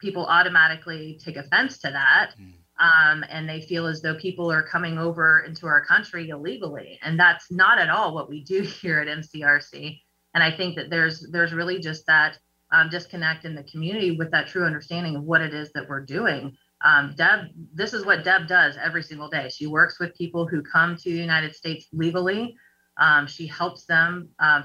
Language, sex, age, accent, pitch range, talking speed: English, female, 30-49, American, 155-180 Hz, 200 wpm